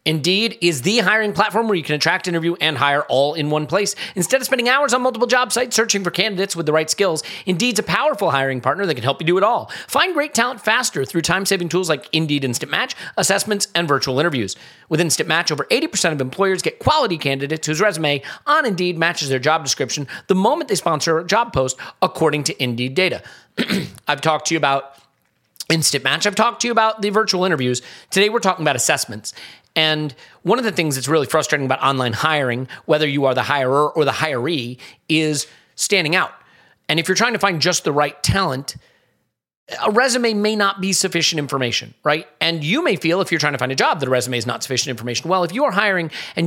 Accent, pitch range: American, 145-200 Hz